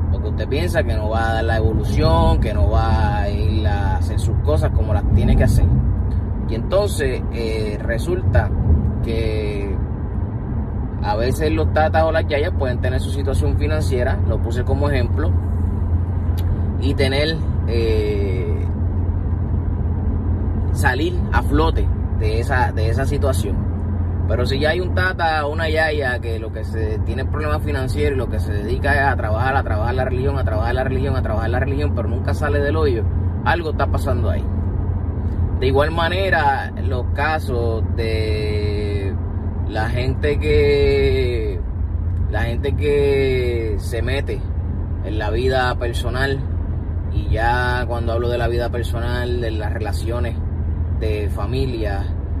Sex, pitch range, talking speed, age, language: male, 85-95 Hz, 145 wpm, 30-49, Spanish